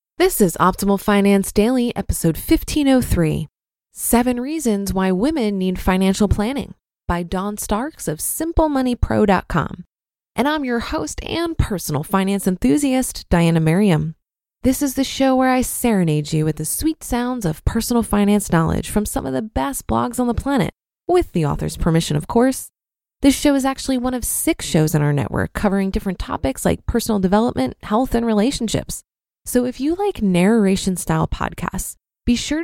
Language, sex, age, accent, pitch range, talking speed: English, female, 20-39, American, 180-260 Hz, 160 wpm